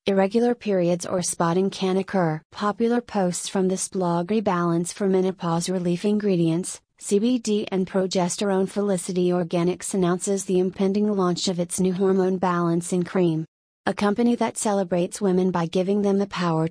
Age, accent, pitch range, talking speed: 30-49, American, 175-200 Hz, 145 wpm